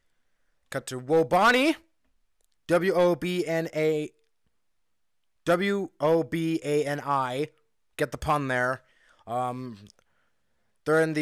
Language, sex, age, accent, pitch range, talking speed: English, male, 20-39, American, 115-150 Hz, 70 wpm